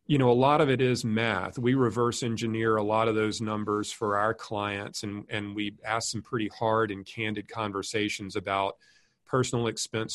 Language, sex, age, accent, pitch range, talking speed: English, male, 40-59, American, 105-120 Hz, 190 wpm